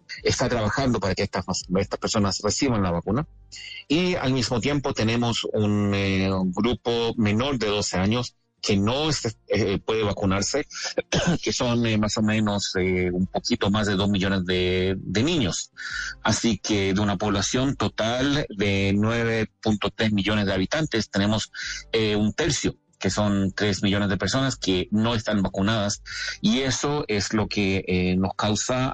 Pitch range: 100-115 Hz